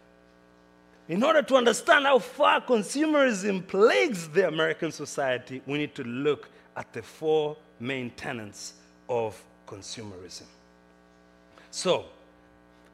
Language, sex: English, male